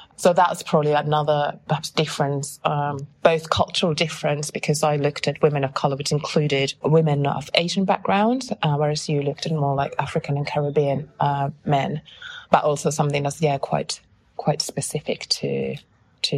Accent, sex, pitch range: British, female, 145-170 Hz